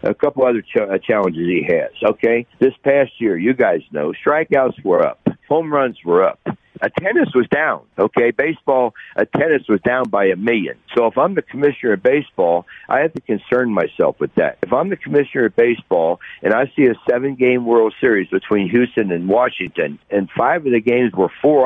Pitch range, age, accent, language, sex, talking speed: 125-180 Hz, 60-79, American, English, male, 200 wpm